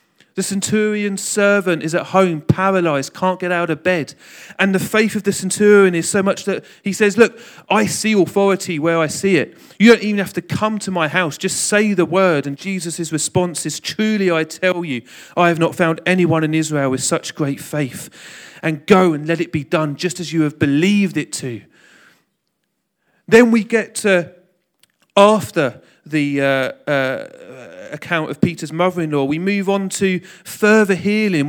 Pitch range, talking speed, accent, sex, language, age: 160-210 Hz, 185 wpm, British, male, English, 40-59